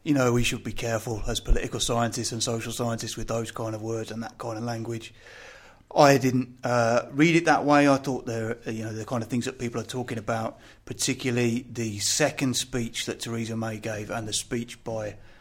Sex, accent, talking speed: male, British, 215 wpm